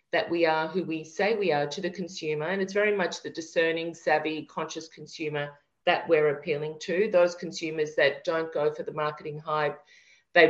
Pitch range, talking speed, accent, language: 155-195 Hz, 195 wpm, Australian, English